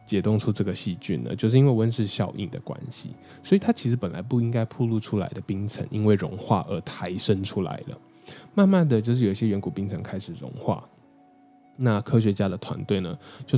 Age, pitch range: 10-29, 100-125 Hz